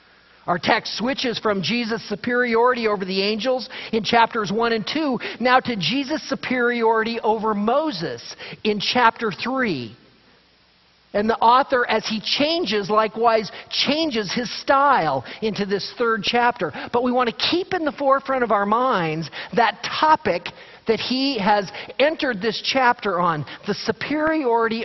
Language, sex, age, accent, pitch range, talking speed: English, male, 50-69, American, 205-255 Hz, 140 wpm